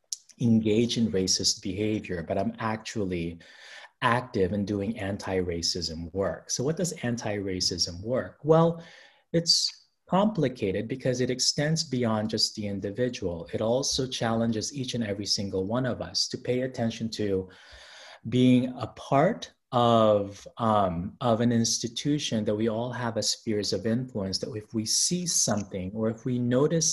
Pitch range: 105-130 Hz